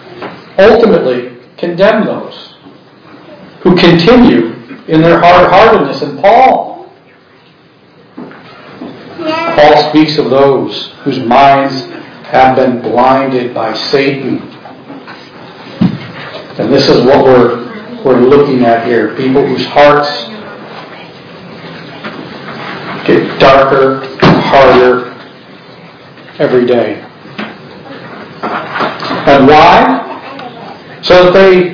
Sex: male